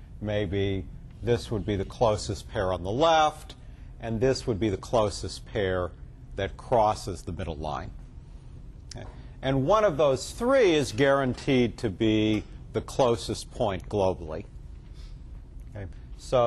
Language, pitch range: English, 95-140 Hz